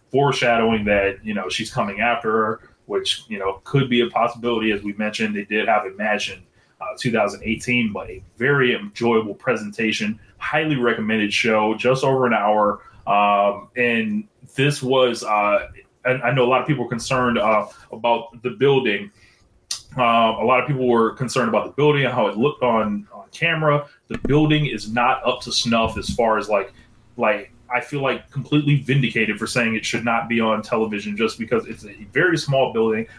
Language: English